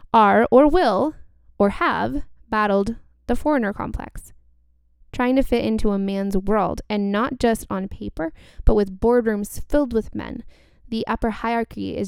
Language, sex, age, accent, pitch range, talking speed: English, female, 10-29, American, 190-230 Hz, 155 wpm